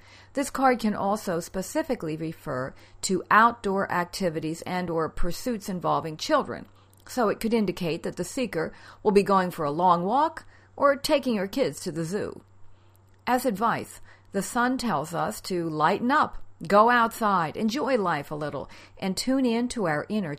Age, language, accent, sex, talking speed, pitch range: 50-69, English, American, female, 165 wpm, 155-225 Hz